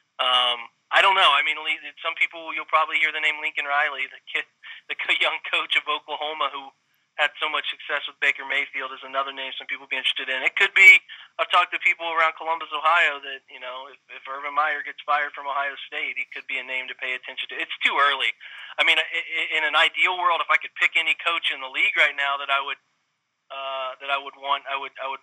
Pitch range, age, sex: 135-150 Hz, 20-39, male